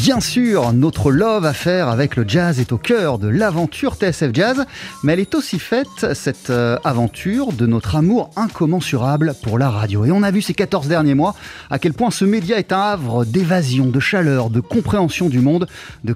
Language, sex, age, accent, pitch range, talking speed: French, male, 30-49, French, 135-205 Hz, 200 wpm